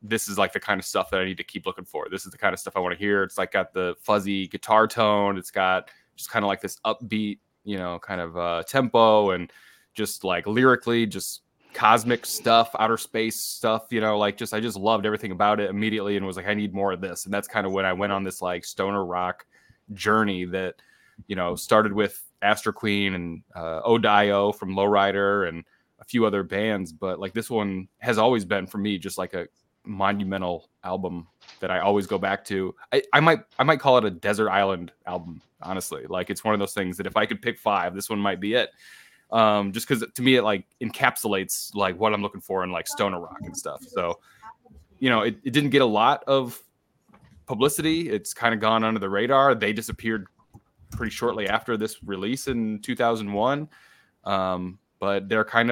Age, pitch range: 20-39, 95-110 Hz